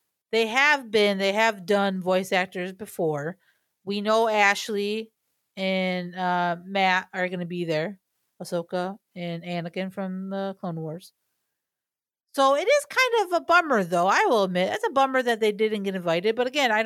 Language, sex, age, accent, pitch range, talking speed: English, female, 40-59, American, 185-235 Hz, 175 wpm